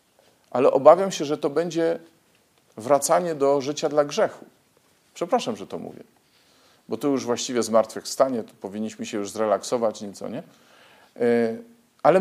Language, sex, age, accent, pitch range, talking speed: Polish, male, 40-59, native, 125-170 Hz, 140 wpm